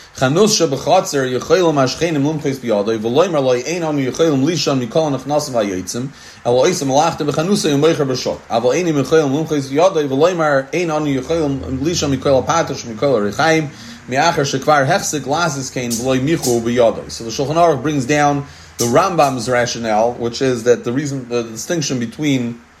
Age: 30-49